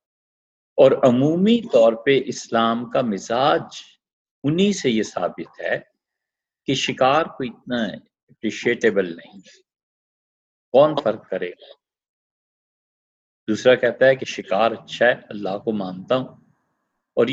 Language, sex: Urdu, male